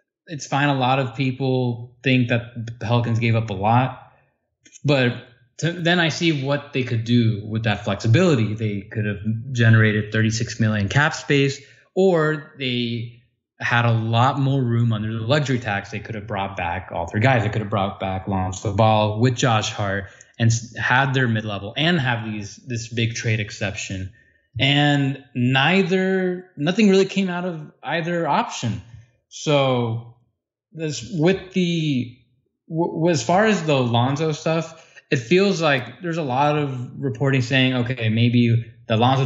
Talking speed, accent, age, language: 165 wpm, American, 20-39, English